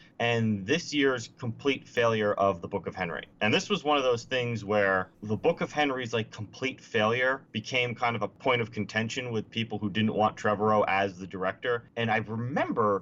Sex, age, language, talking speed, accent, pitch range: male, 30-49, English, 205 wpm, American, 105-130 Hz